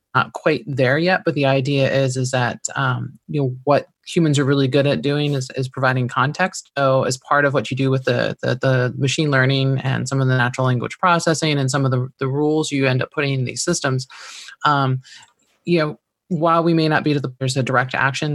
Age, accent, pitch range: 20-39, American, 125-140 Hz